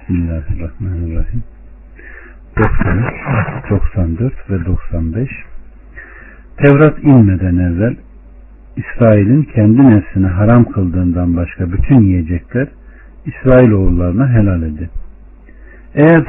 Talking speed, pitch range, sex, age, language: 75 wpm, 85-125 Hz, male, 60-79, Turkish